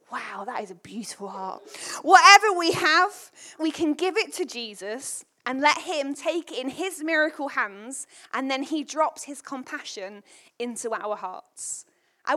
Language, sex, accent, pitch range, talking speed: English, female, British, 235-325 Hz, 160 wpm